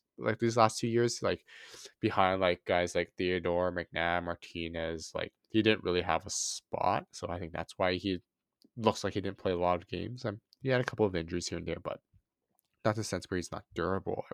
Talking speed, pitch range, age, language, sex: 230 wpm, 90-125 Hz, 20-39, English, male